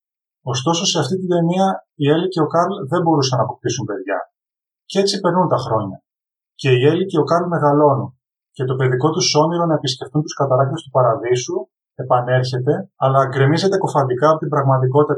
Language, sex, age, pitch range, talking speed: Greek, male, 20-39, 130-165 Hz, 180 wpm